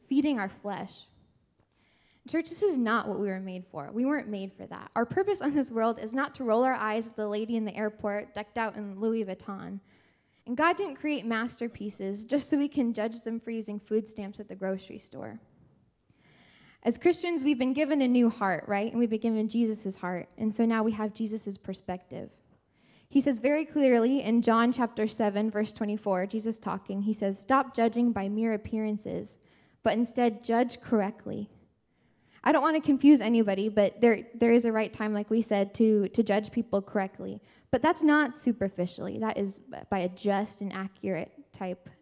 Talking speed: 195 wpm